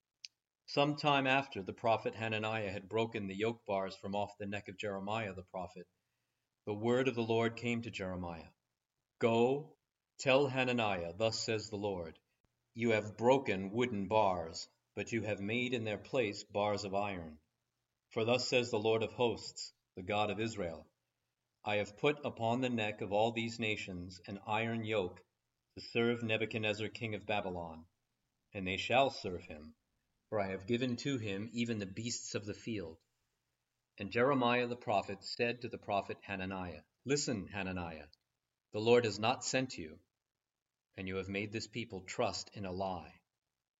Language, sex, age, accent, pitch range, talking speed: English, male, 40-59, American, 100-120 Hz, 170 wpm